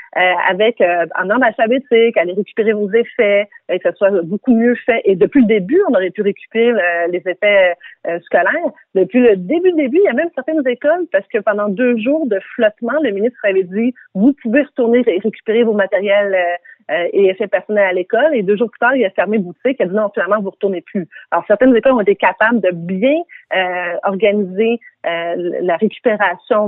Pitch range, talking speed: 190-240 Hz, 220 wpm